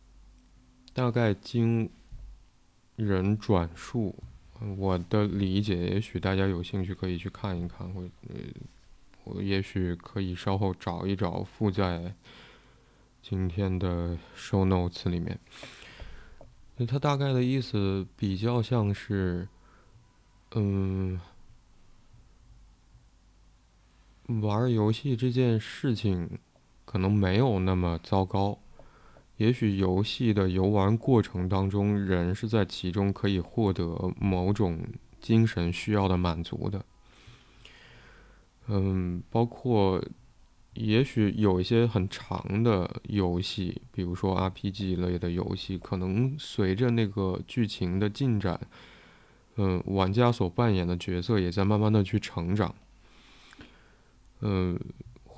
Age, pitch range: 20-39, 90-115 Hz